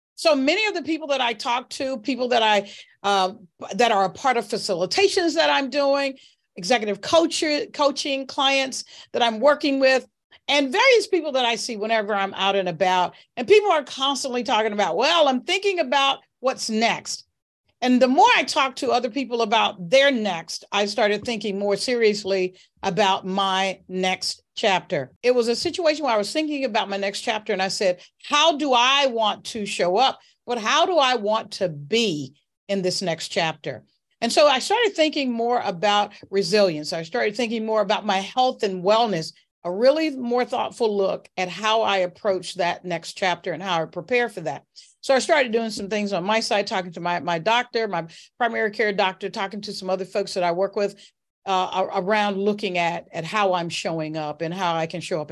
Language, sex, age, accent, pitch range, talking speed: English, female, 40-59, American, 185-260 Hz, 200 wpm